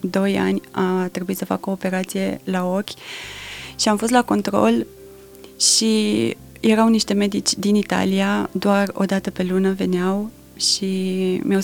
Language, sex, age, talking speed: Romanian, female, 20-39, 150 wpm